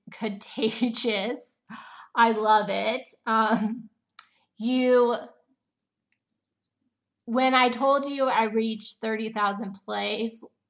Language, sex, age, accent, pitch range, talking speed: English, female, 20-39, American, 215-245 Hz, 80 wpm